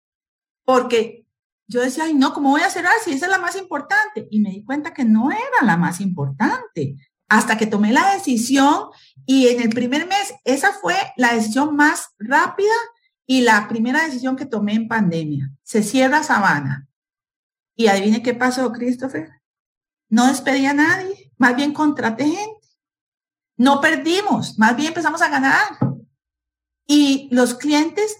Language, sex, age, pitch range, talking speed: English, female, 40-59, 220-310 Hz, 165 wpm